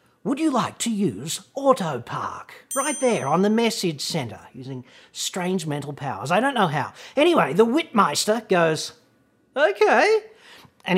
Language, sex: English, male